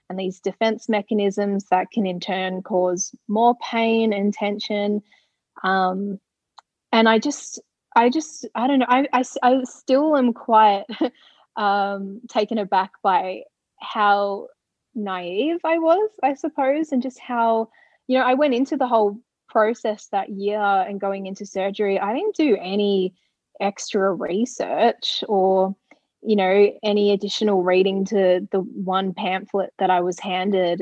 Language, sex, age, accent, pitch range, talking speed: English, female, 20-39, Australian, 195-240 Hz, 145 wpm